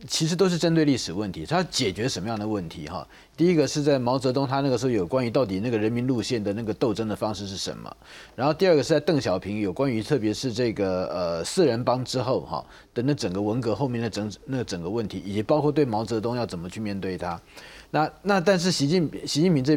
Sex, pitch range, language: male, 120-175 Hz, Chinese